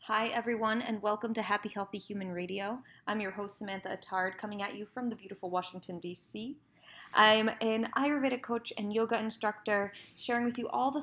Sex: female